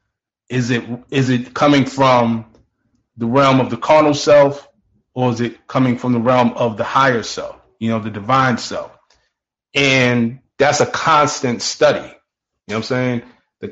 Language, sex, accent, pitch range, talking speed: English, male, American, 125-145 Hz, 170 wpm